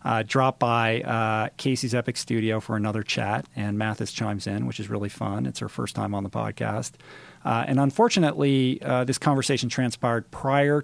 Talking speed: 185 wpm